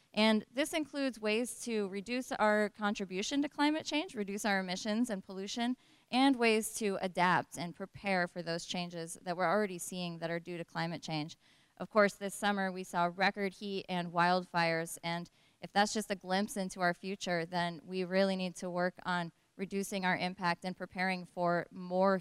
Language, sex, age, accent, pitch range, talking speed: English, female, 20-39, American, 175-215 Hz, 185 wpm